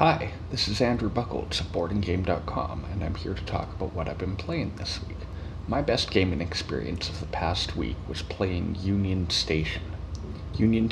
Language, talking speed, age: English, 175 wpm, 30-49